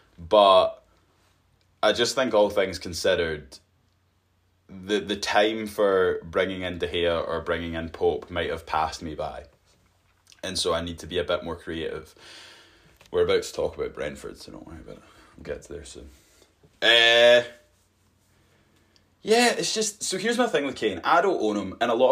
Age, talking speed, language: 20-39, 180 wpm, English